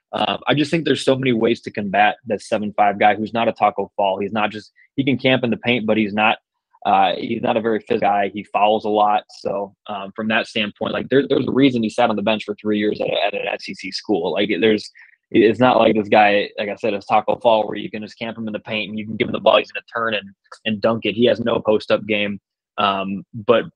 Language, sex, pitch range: English, male, 105-115 Hz